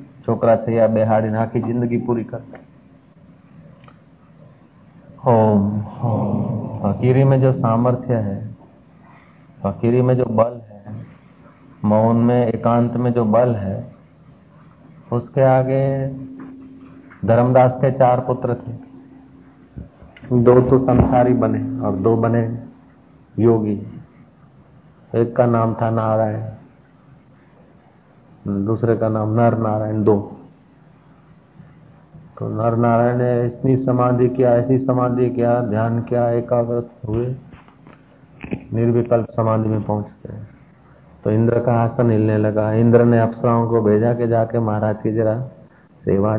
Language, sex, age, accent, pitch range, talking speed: Hindi, male, 50-69, native, 110-125 Hz, 120 wpm